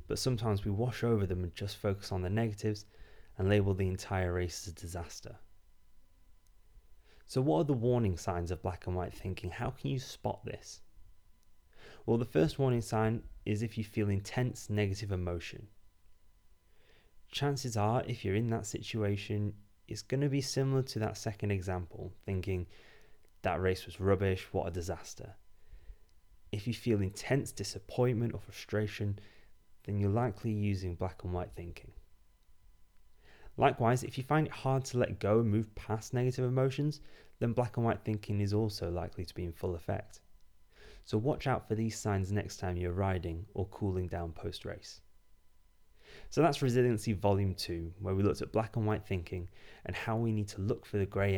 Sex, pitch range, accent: male, 90-110 Hz, British